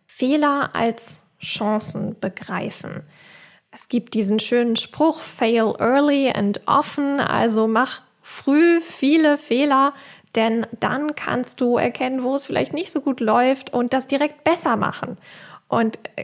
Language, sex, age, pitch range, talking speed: German, female, 20-39, 215-265 Hz, 135 wpm